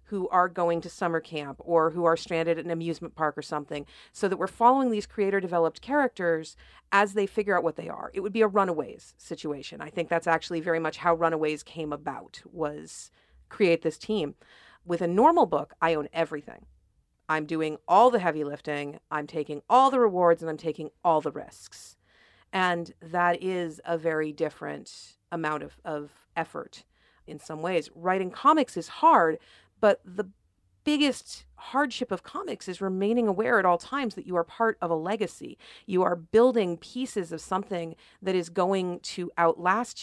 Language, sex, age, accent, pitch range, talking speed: English, female, 40-59, American, 160-195 Hz, 180 wpm